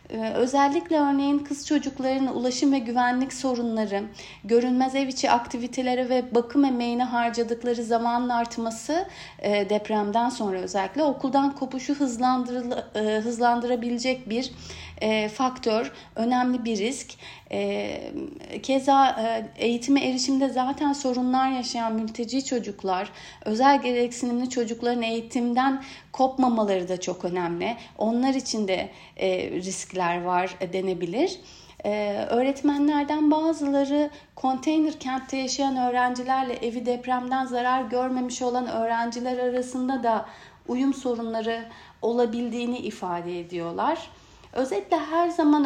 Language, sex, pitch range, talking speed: Turkish, female, 225-270 Hz, 105 wpm